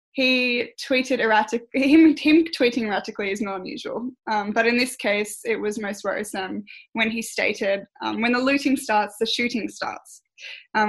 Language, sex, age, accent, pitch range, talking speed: English, female, 10-29, Australian, 210-245 Hz, 170 wpm